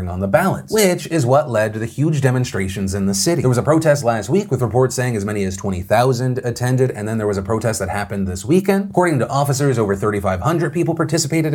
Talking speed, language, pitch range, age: 235 wpm, English, 105-145 Hz, 30-49